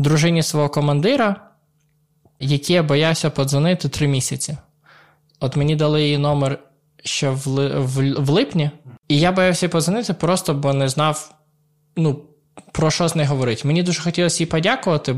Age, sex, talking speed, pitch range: 20-39, male, 155 wpm, 140-175 Hz